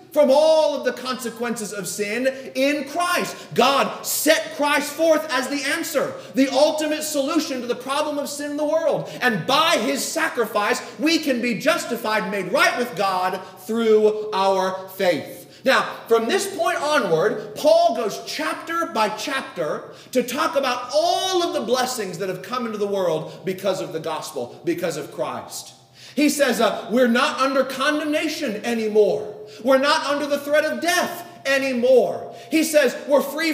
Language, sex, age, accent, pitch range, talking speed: English, male, 30-49, American, 240-305 Hz, 165 wpm